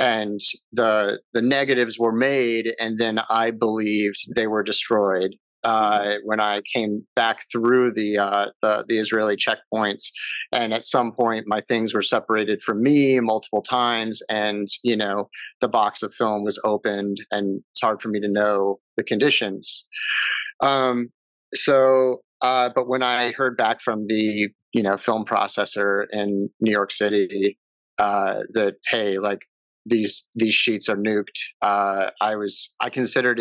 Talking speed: 155 wpm